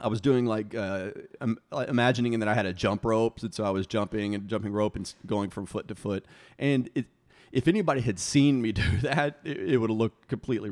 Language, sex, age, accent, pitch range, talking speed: English, male, 30-49, American, 100-120 Hz, 230 wpm